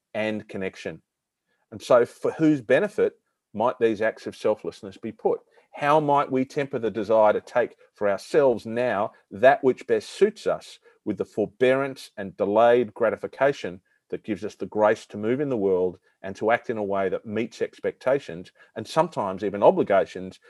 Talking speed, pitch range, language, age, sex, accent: 175 wpm, 100-165 Hz, English, 40-59, male, Australian